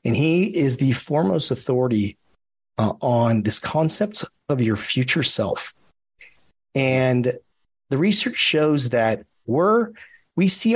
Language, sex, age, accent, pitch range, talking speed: English, male, 40-59, American, 115-155 Hz, 125 wpm